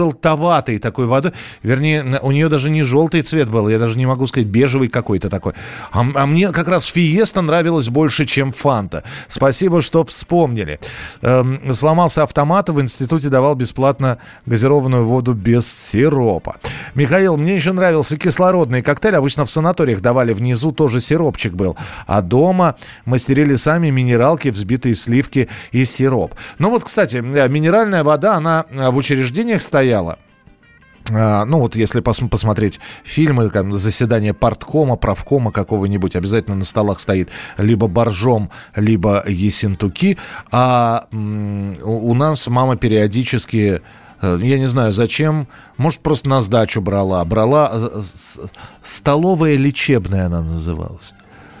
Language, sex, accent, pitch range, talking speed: Russian, male, native, 110-150 Hz, 130 wpm